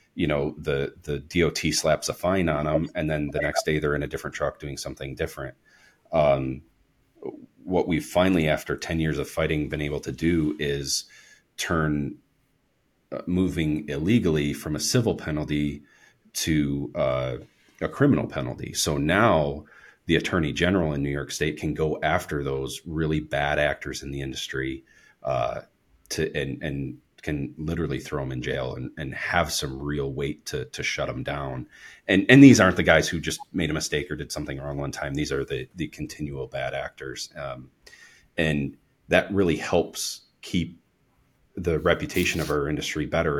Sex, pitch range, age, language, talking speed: male, 70-80 Hz, 40-59, English, 175 wpm